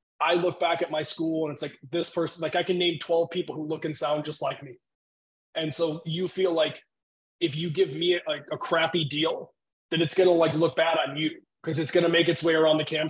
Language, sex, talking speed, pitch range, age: English, male, 260 wpm, 150-170 Hz, 20-39